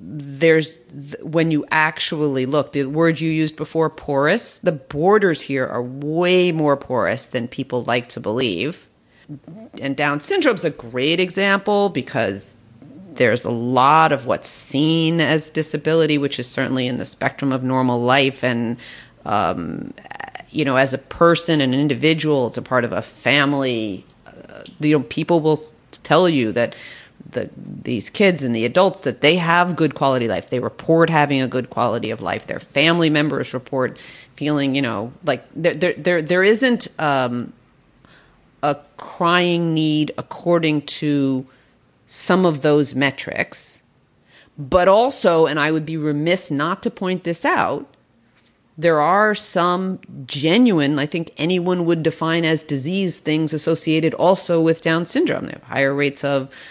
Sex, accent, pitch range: female, American, 135-165 Hz